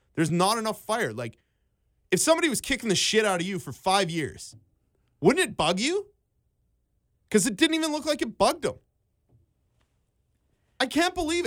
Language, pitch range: English, 150-220 Hz